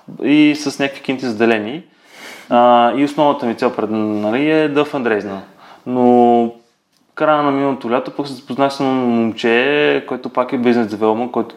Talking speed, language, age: 155 wpm, Bulgarian, 20-39